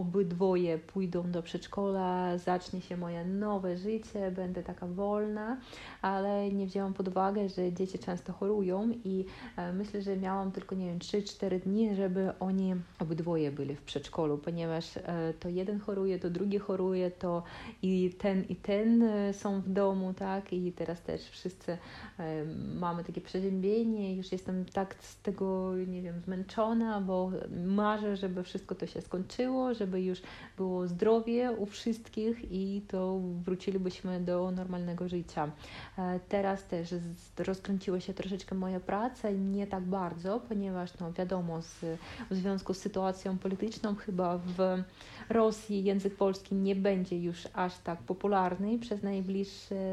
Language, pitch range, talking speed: Polish, 180-200 Hz, 145 wpm